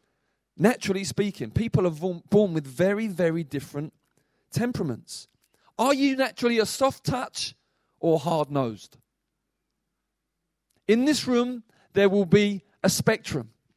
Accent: British